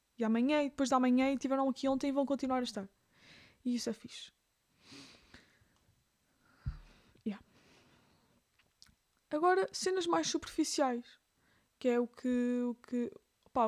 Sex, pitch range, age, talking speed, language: female, 240-290 Hz, 20-39, 135 wpm, Portuguese